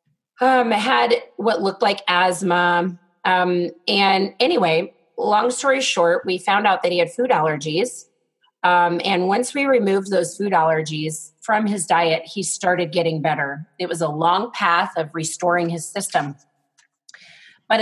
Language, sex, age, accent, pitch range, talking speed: English, female, 30-49, American, 165-195 Hz, 150 wpm